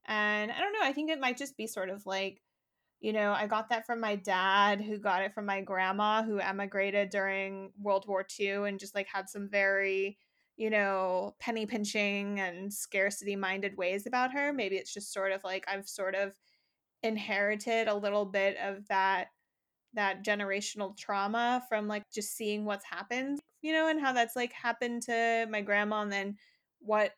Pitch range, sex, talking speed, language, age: 195-225 Hz, female, 190 wpm, English, 20-39